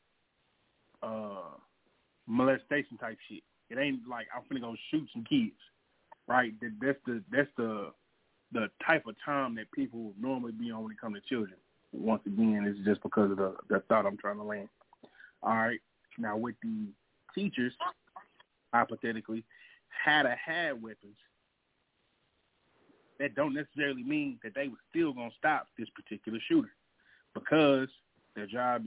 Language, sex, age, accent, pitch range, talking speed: English, male, 30-49, American, 110-150 Hz, 150 wpm